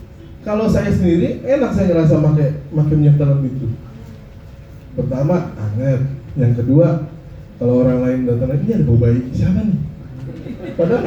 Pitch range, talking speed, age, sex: 135-205 Hz, 145 wpm, 20-39, male